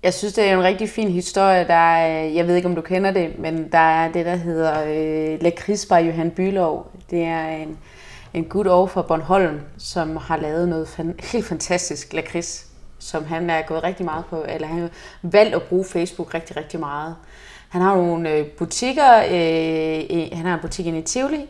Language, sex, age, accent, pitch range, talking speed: Danish, female, 30-49, native, 165-190 Hz, 200 wpm